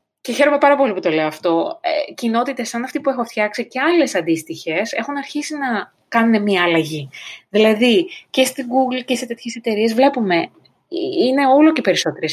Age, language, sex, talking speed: 20-39, Greek, female, 180 wpm